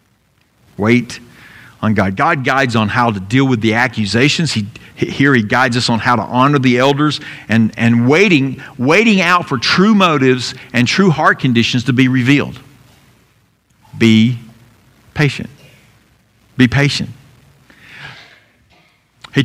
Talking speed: 135 wpm